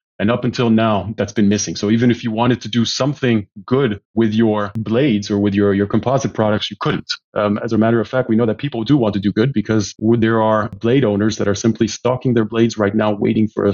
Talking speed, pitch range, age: 255 wpm, 105-120 Hz, 30-49